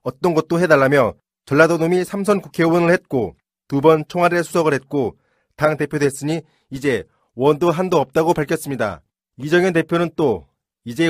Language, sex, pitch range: Korean, male, 140-165 Hz